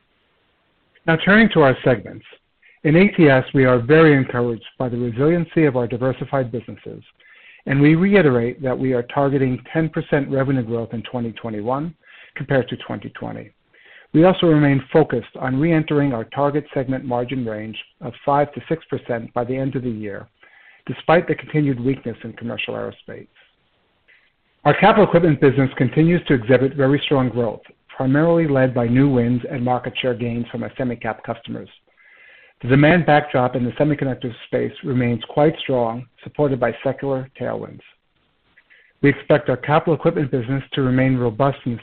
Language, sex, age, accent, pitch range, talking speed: English, male, 60-79, American, 125-150 Hz, 155 wpm